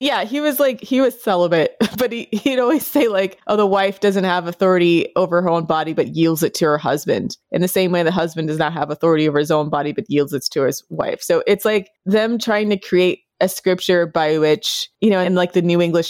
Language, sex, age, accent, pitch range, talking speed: English, female, 20-39, American, 155-190 Hz, 245 wpm